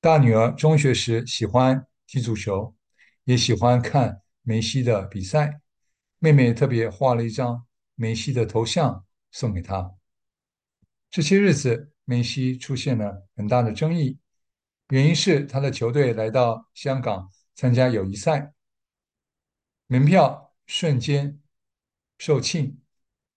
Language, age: English, 60-79